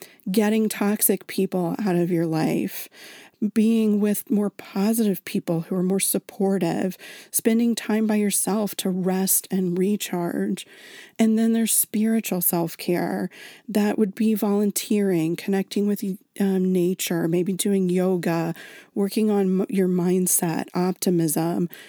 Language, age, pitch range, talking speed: English, 40-59, 180-215 Hz, 125 wpm